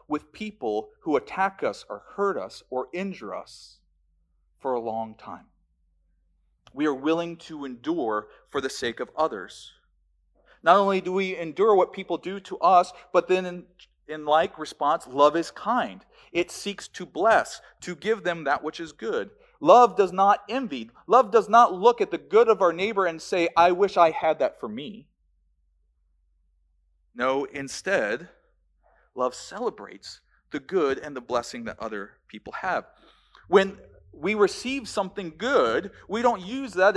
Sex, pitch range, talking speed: male, 135-205 Hz, 160 wpm